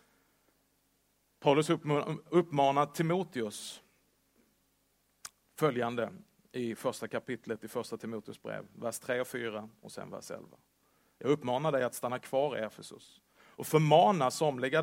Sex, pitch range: male, 125-165 Hz